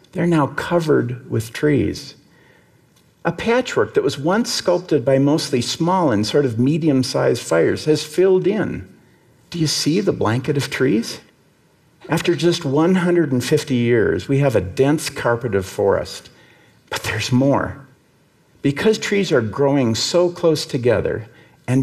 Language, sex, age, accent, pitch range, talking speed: Russian, male, 50-69, American, 115-160 Hz, 140 wpm